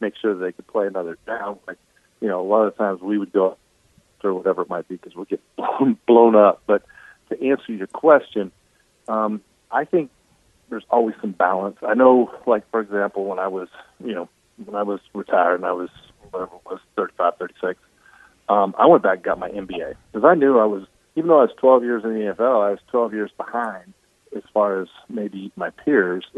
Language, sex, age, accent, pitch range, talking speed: English, male, 40-59, American, 95-115 Hz, 215 wpm